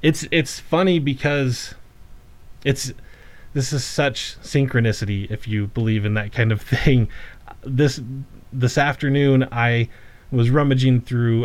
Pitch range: 110-145 Hz